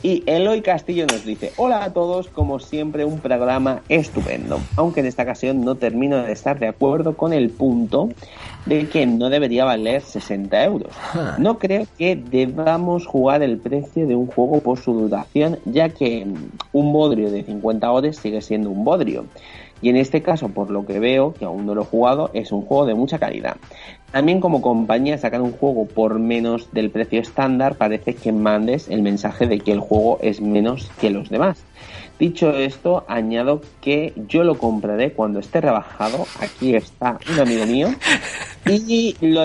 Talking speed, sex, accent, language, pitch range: 180 wpm, male, Spanish, Spanish, 110-150 Hz